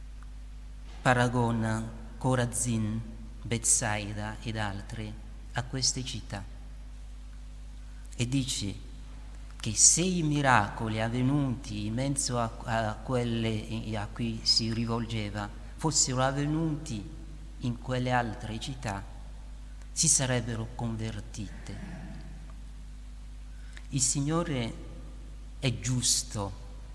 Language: Italian